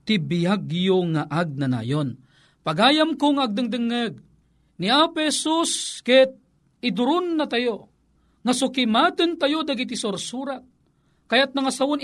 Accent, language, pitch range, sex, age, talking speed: native, Filipino, 200-285 Hz, male, 40-59, 105 wpm